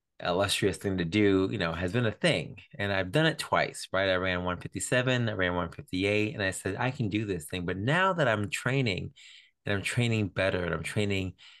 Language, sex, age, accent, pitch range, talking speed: English, male, 30-49, American, 95-135 Hz, 215 wpm